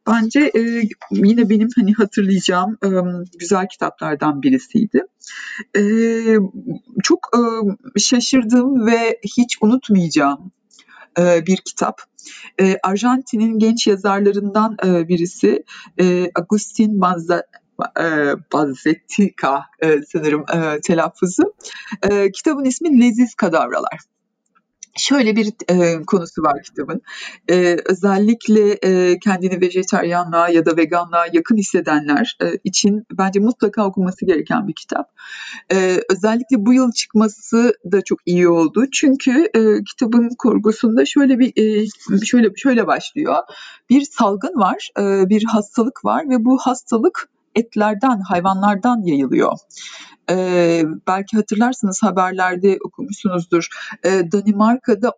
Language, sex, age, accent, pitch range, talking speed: Turkish, female, 50-69, native, 185-235 Hz, 100 wpm